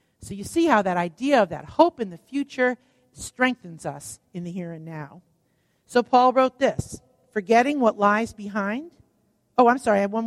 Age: 50-69